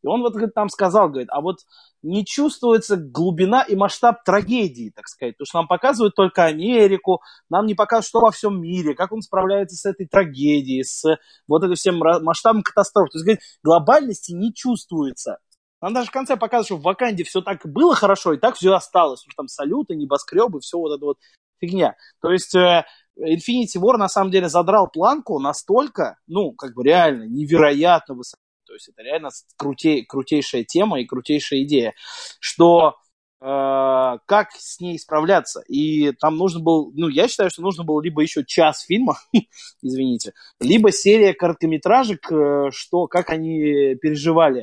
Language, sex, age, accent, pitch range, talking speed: Russian, male, 30-49, native, 150-205 Hz, 170 wpm